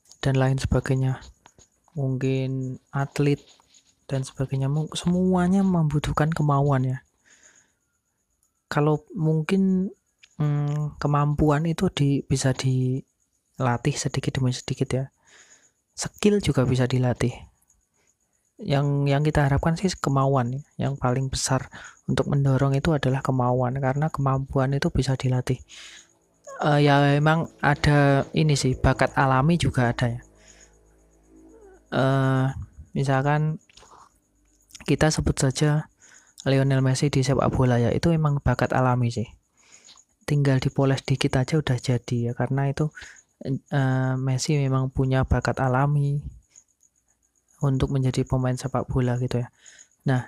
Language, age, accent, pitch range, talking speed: Indonesian, 30-49, native, 130-145 Hz, 115 wpm